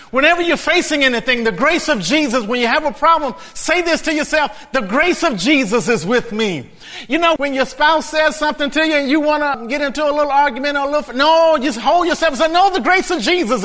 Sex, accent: male, American